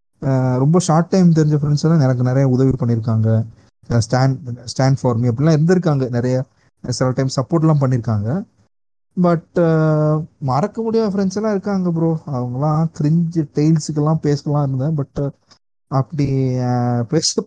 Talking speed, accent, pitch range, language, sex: 115 wpm, native, 120-155 Hz, Tamil, male